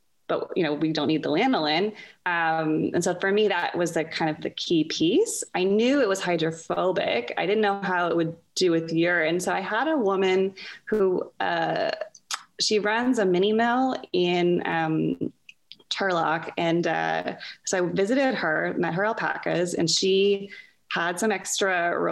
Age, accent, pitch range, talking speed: 20-39, American, 165-215 Hz, 170 wpm